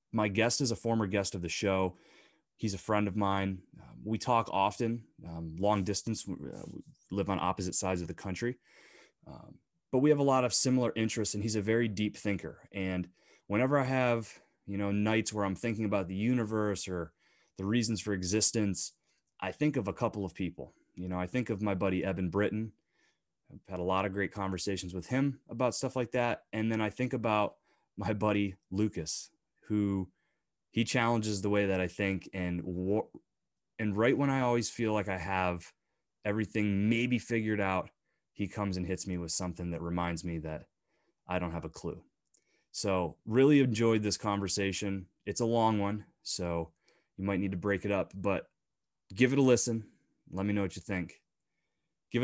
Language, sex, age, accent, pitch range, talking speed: English, male, 30-49, American, 95-115 Hz, 190 wpm